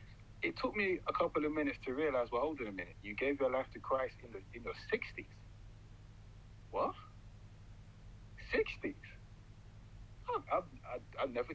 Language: English